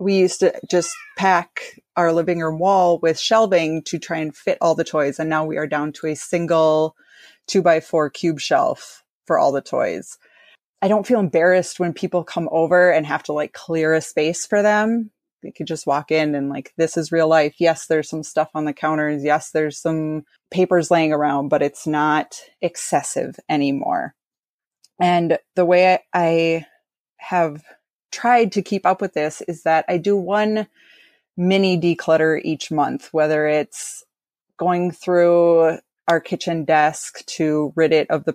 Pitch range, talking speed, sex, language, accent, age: 155-180 Hz, 180 wpm, female, English, American, 20-39